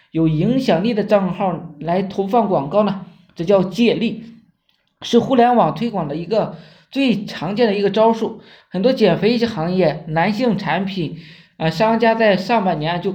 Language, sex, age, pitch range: Chinese, male, 20-39, 180-230 Hz